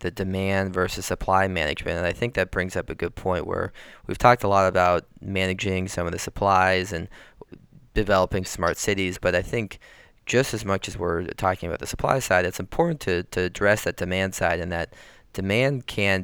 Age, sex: 20-39, male